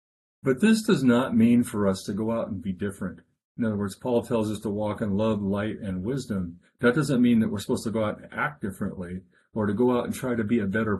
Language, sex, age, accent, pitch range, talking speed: English, male, 50-69, American, 95-120 Hz, 260 wpm